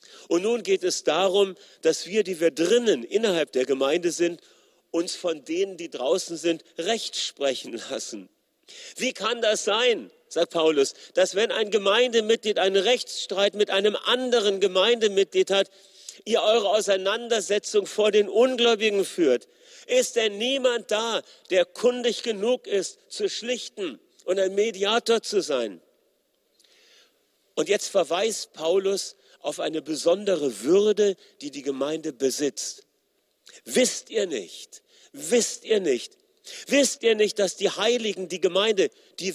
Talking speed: 135 wpm